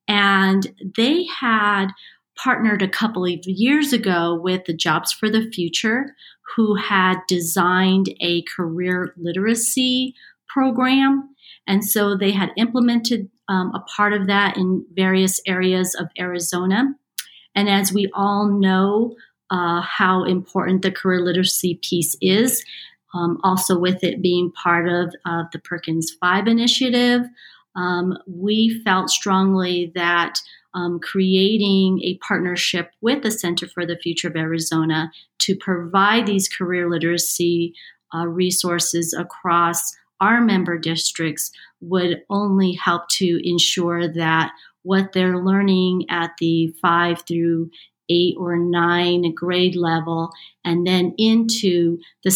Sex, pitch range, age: female, 175-200 Hz, 40-59